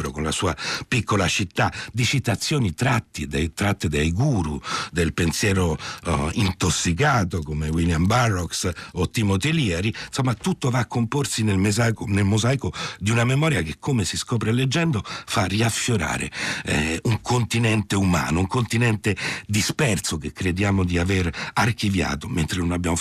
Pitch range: 85-120 Hz